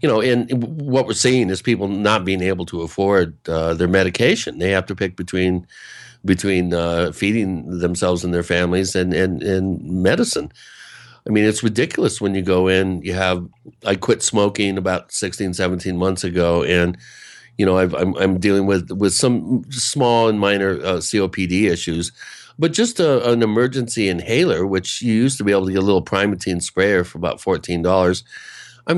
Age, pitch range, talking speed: 60-79, 90-110 Hz, 185 wpm